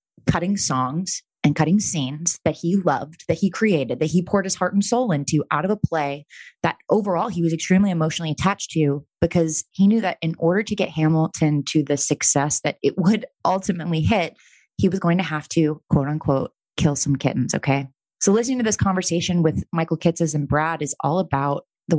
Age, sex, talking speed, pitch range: 20-39, female, 200 wpm, 155-190 Hz